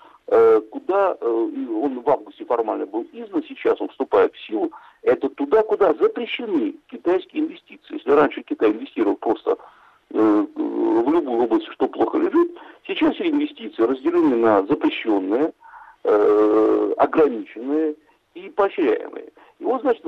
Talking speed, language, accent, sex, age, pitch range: 125 wpm, Russian, native, male, 50-69, 310-440 Hz